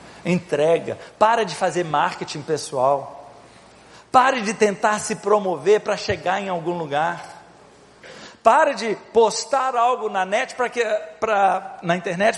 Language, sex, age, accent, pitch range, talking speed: Portuguese, male, 50-69, Brazilian, 175-240 Hz, 130 wpm